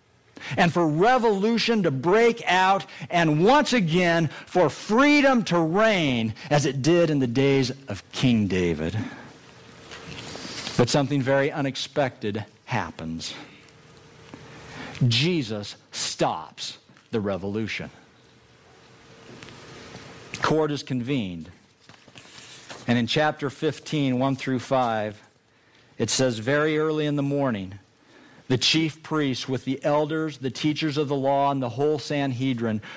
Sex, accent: male, American